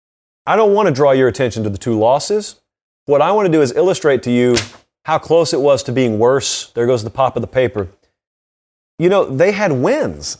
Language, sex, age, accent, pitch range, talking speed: English, male, 30-49, American, 130-180 Hz, 225 wpm